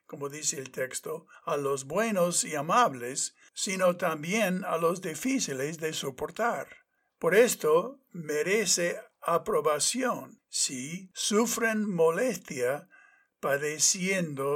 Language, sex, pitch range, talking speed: Spanish, male, 155-240 Hz, 105 wpm